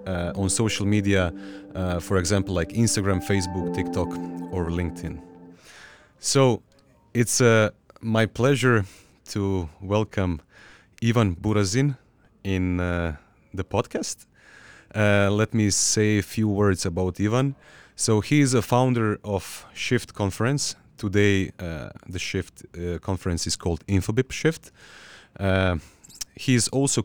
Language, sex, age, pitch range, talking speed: Croatian, male, 30-49, 90-110 Hz, 125 wpm